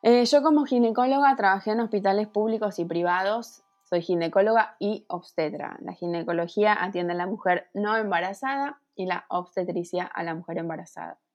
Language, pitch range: Spanish, 180-230 Hz